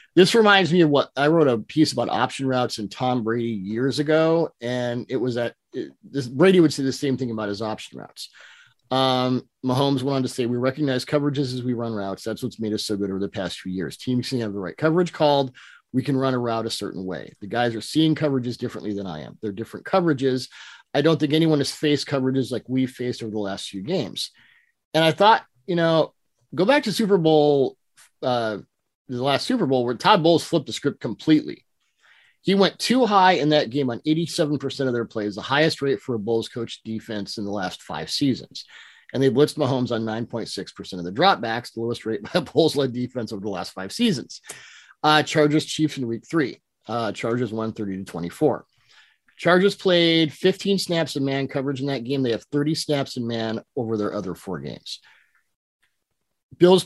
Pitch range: 115-155 Hz